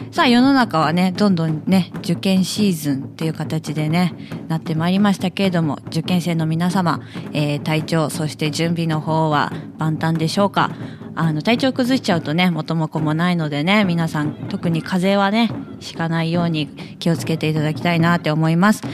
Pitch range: 155-195 Hz